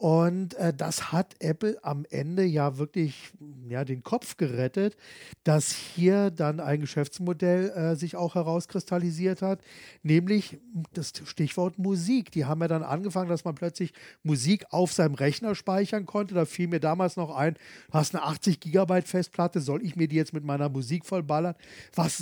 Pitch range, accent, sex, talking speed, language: 155-195 Hz, German, male, 165 wpm, German